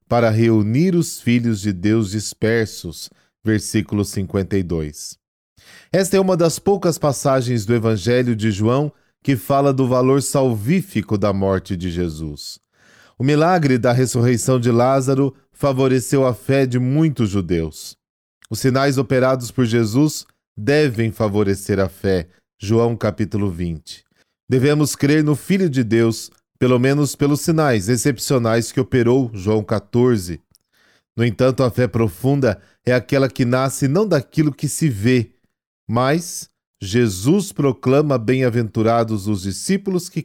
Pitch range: 110-145 Hz